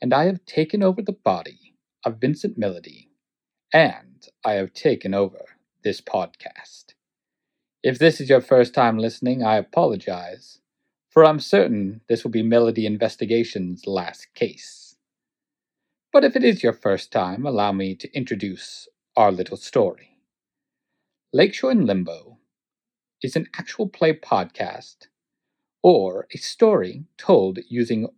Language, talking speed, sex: English, 135 wpm, male